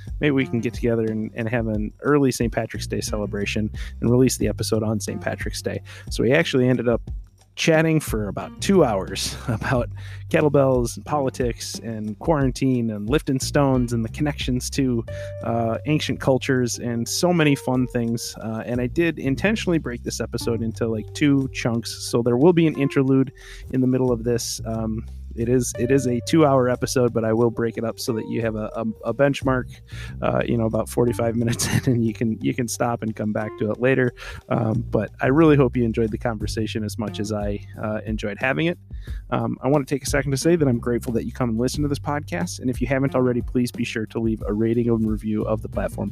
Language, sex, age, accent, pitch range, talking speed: English, male, 30-49, American, 110-130 Hz, 220 wpm